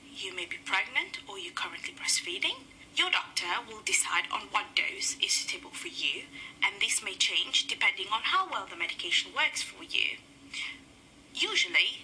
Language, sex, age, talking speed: Tamil, female, 30-49, 165 wpm